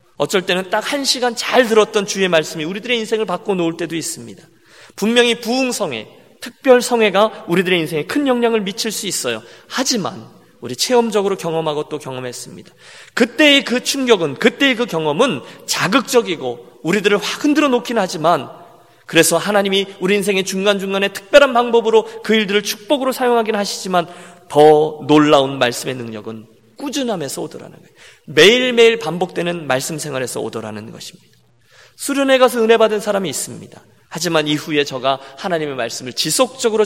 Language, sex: Korean, male